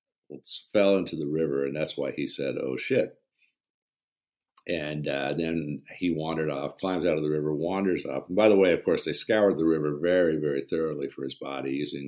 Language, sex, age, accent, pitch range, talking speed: English, male, 50-69, American, 70-80 Hz, 205 wpm